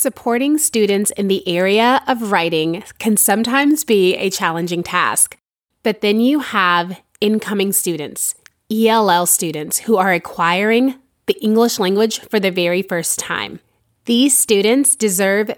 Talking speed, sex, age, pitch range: 135 wpm, female, 30-49, 195-255 Hz